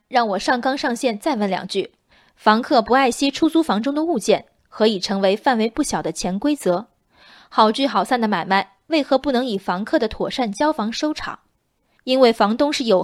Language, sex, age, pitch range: Chinese, female, 20-39, 205-275 Hz